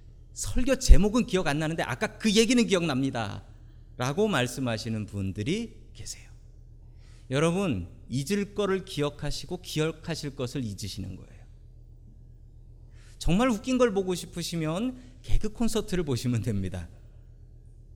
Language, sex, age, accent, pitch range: Korean, male, 40-59, native, 115-180 Hz